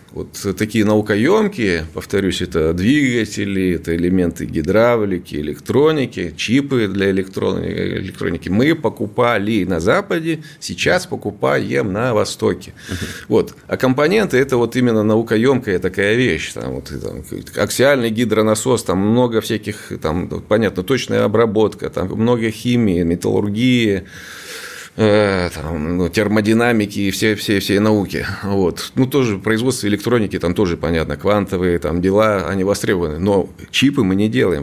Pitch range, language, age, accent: 100-125 Hz, Russian, 30-49, native